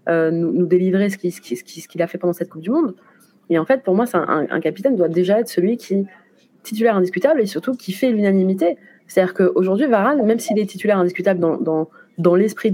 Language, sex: French, female